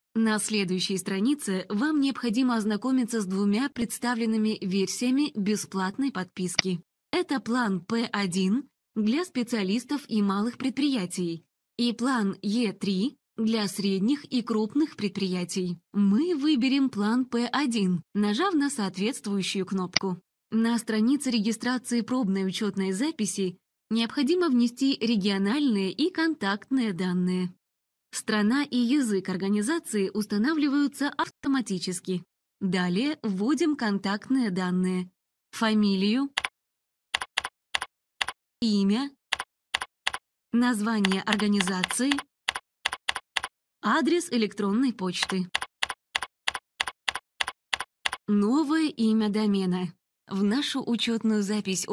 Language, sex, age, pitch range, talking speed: Russian, female, 20-39, 195-255 Hz, 85 wpm